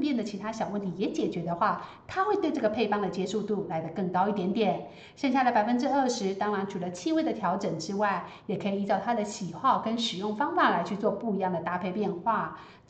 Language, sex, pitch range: Chinese, female, 190-285 Hz